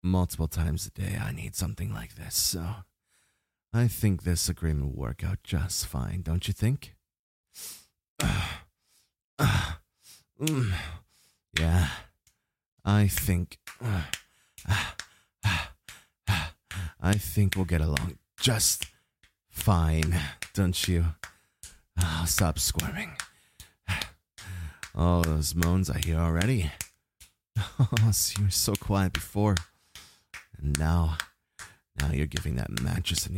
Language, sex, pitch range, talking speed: English, male, 80-100 Hz, 110 wpm